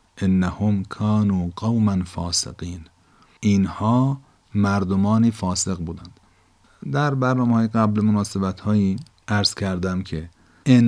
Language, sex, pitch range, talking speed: Persian, male, 90-110 Hz, 85 wpm